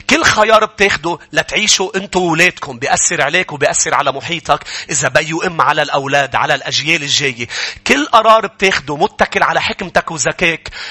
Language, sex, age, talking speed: English, male, 30-49, 140 wpm